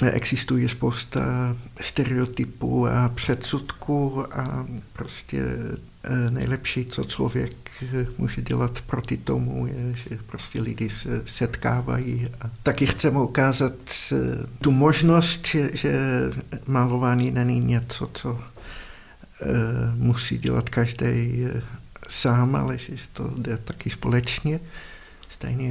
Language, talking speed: Czech, 100 wpm